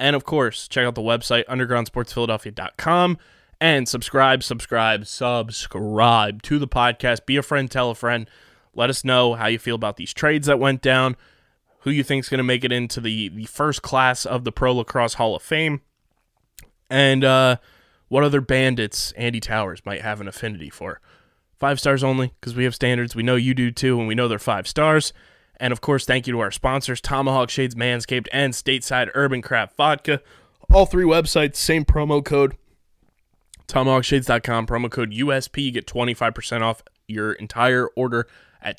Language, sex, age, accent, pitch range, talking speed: English, male, 20-39, American, 115-135 Hz, 180 wpm